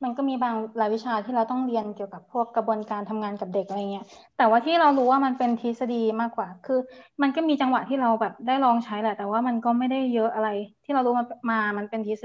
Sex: female